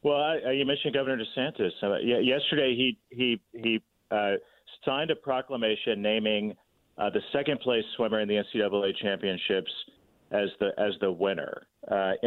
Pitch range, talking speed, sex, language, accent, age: 105-130 Hz, 150 wpm, male, English, American, 40-59